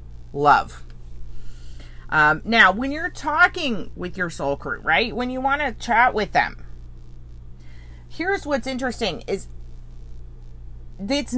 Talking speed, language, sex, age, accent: 120 wpm, English, female, 30-49, American